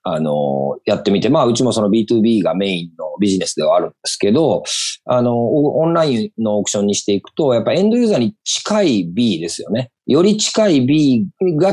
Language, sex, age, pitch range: Japanese, male, 40-59, 115-170 Hz